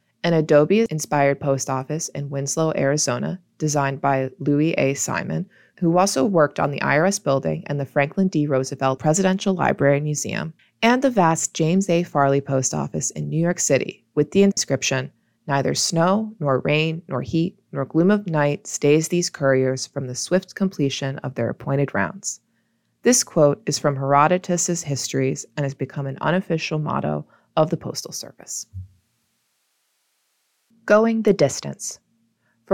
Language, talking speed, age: English, 155 wpm, 20-39